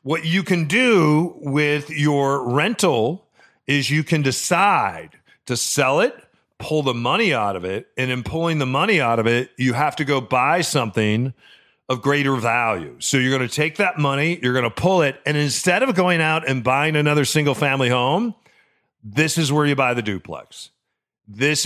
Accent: American